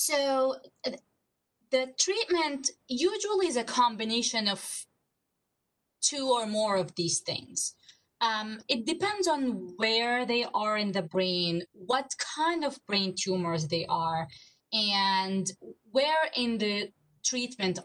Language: English